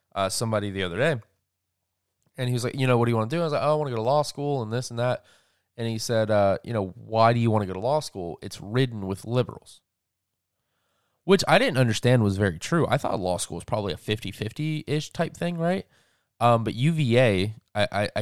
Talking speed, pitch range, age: 245 wpm, 100-135 Hz, 20-39